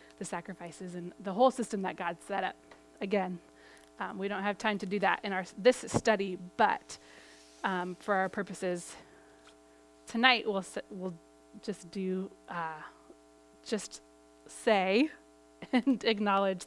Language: English